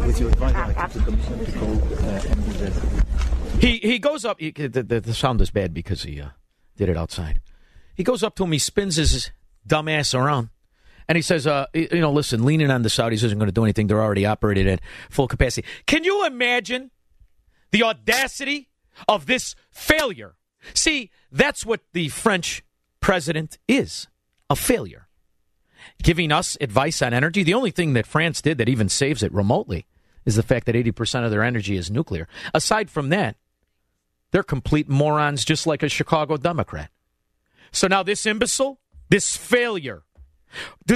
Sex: male